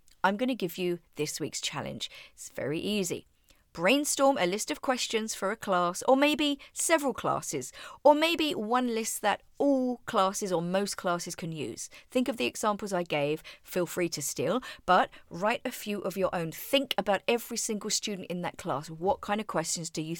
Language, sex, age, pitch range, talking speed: English, female, 40-59, 170-260 Hz, 195 wpm